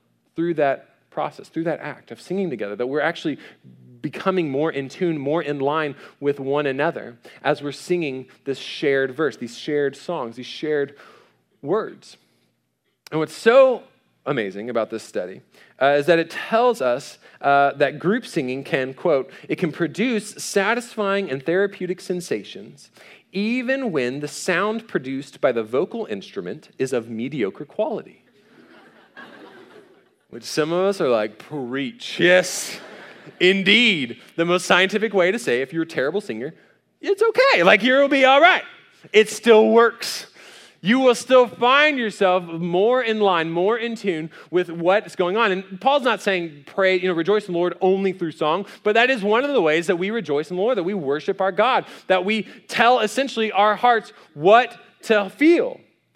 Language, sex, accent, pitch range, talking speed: English, male, American, 145-215 Hz, 170 wpm